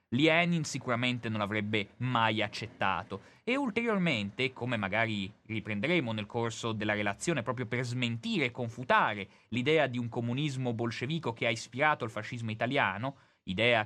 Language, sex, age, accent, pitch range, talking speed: Italian, male, 30-49, native, 110-140 Hz, 140 wpm